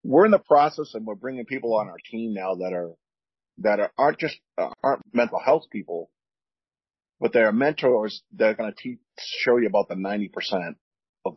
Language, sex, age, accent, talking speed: English, male, 40-59, American, 195 wpm